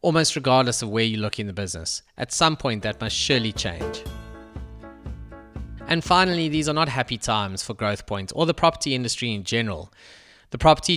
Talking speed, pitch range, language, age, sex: 185 wpm, 110-140 Hz, English, 20-39, male